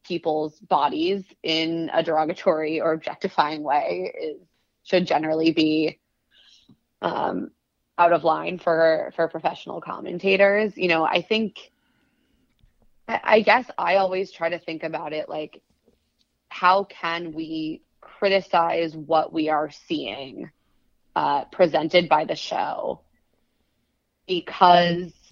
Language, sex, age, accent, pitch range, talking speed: English, female, 20-39, American, 160-195 Hz, 115 wpm